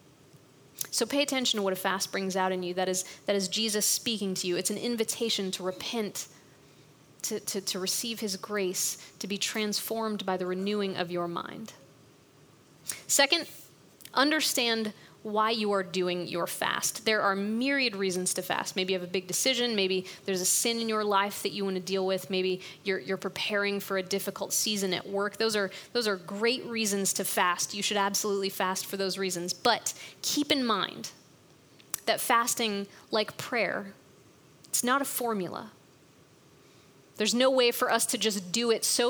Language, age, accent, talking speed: English, 20-39, American, 180 wpm